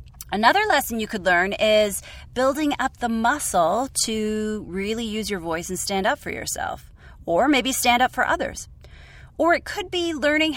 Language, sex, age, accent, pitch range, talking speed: English, female, 30-49, American, 185-250 Hz, 175 wpm